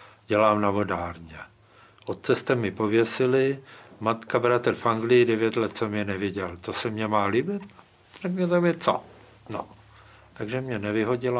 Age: 60-79